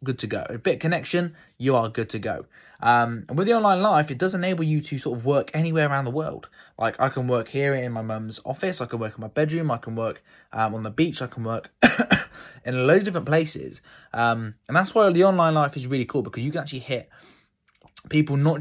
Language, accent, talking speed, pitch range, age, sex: English, British, 240 wpm, 115-155 Hz, 20-39, male